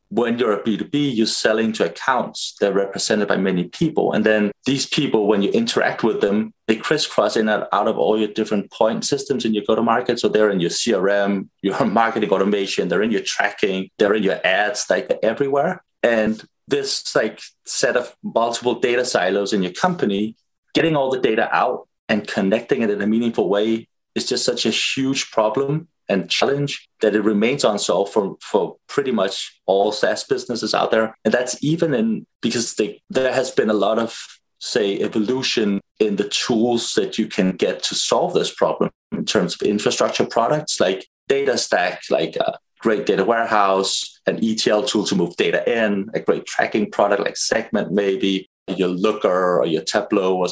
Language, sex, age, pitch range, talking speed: English, male, 30-49, 100-135 Hz, 190 wpm